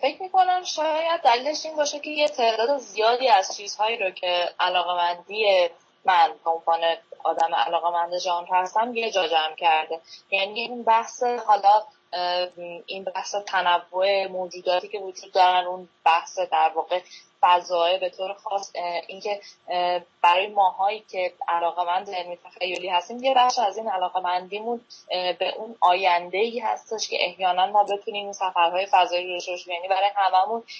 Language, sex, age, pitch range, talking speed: Persian, female, 10-29, 175-210 Hz, 140 wpm